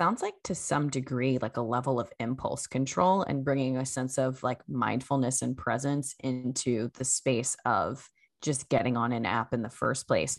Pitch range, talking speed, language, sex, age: 135-160 Hz, 190 wpm, English, female, 20-39